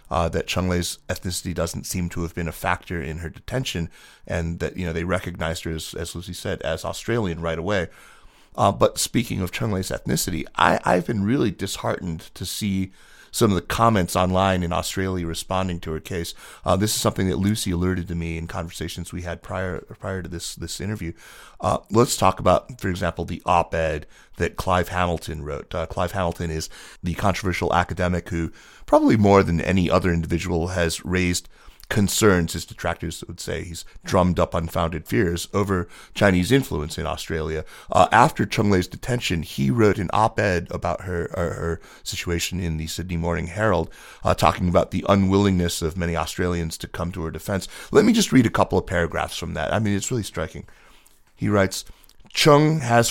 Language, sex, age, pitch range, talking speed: English, male, 30-49, 85-100 Hz, 190 wpm